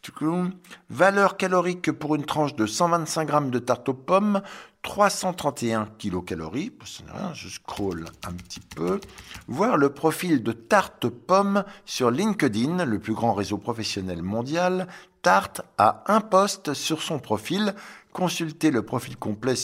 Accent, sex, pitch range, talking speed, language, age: French, male, 115-180 Hz, 145 wpm, French, 60-79